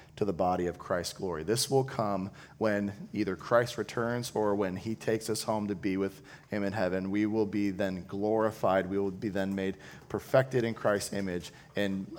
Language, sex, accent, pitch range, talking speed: English, male, American, 100-130 Hz, 195 wpm